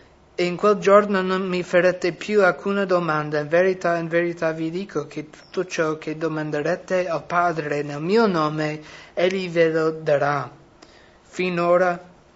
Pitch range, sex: 150-185 Hz, male